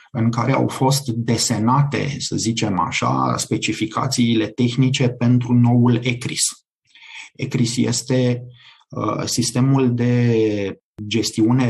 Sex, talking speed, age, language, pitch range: male, 95 wpm, 30-49, Romanian, 115-135 Hz